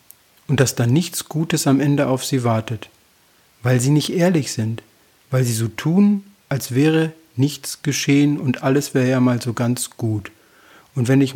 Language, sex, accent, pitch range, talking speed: German, male, German, 120-145 Hz, 180 wpm